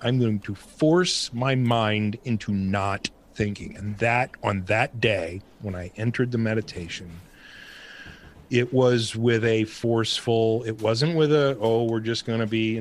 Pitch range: 100-120 Hz